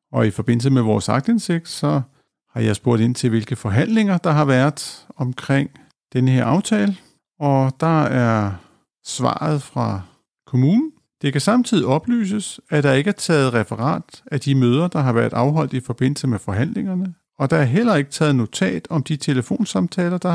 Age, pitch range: 50-69, 120-165 Hz